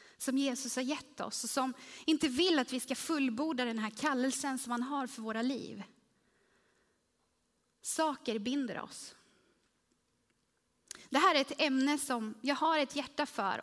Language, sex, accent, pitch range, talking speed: Swedish, female, native, 245-320 Hz, 160 wpm